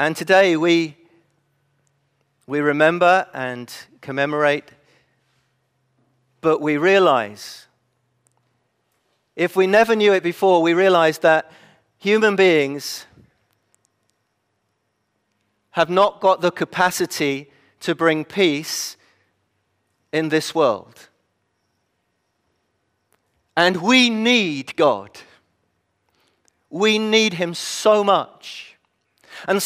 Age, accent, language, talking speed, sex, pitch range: 40-59, British, English, 85 wpm, male, 135-195 Hz